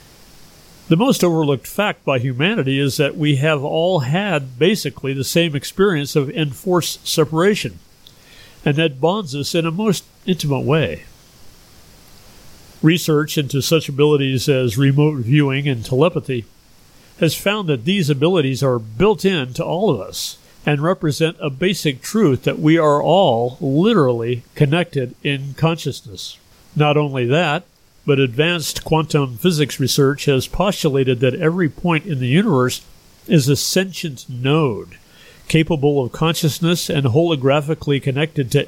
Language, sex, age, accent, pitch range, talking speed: English, male, 50-69, American, 135-170 Hz, 140 wpm